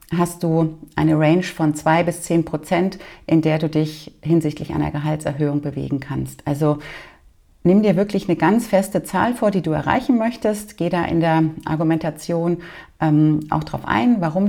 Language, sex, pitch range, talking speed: German, female, 155-180 Hz, 170 wpm